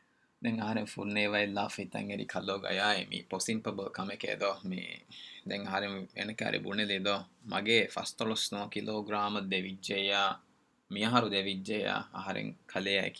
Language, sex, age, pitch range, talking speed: Urdu, male, 20-39, 100-110 Hz, 45 wpm